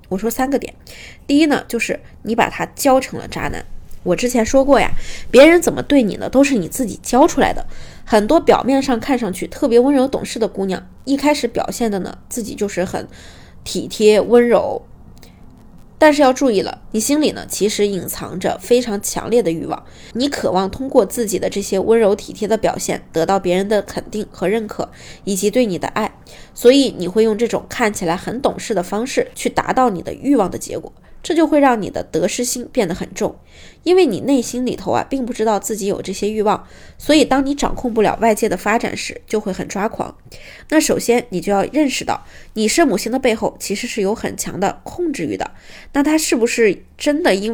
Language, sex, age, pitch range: Chinese, female, 20-39, 200-265 Hz